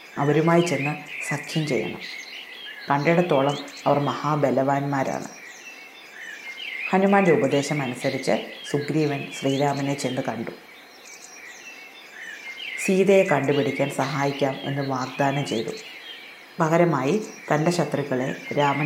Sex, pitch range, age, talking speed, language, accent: female, 140-160 Hz, 30-49, 75 wpm, Malayalam, native